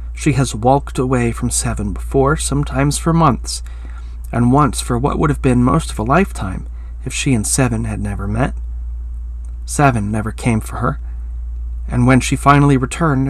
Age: 30-49